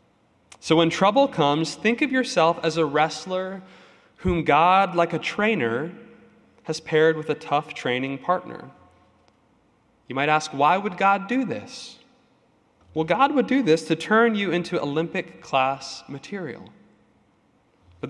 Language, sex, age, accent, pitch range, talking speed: English, male, 20-39, American, 135-195 Hz, 145 wpm